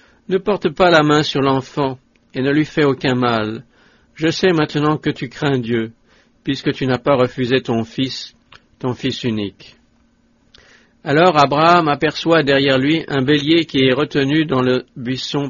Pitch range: 125-150 Hz